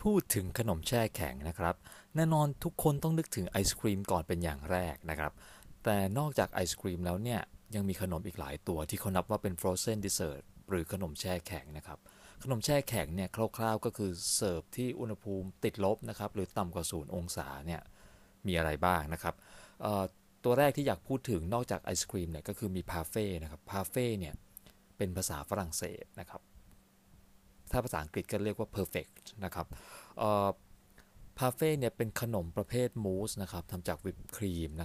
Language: Thai